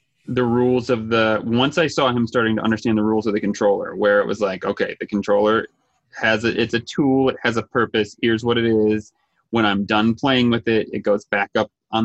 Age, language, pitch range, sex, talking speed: 30-49, English, 110-125 Hz, male, 230 wpm